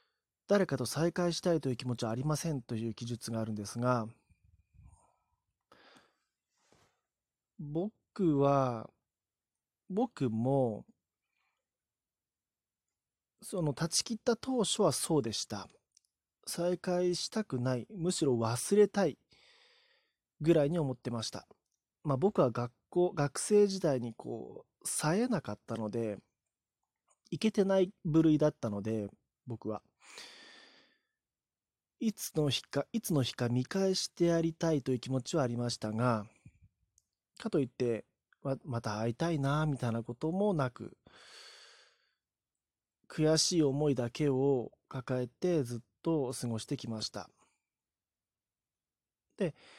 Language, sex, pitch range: Japanese, male, 115-175 Hz